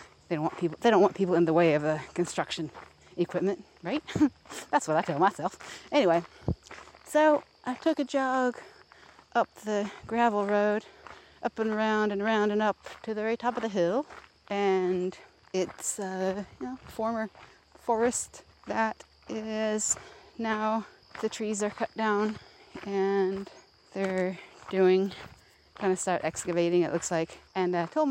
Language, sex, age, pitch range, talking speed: English, female, 30-49, 185-240 Hz, 160 wpm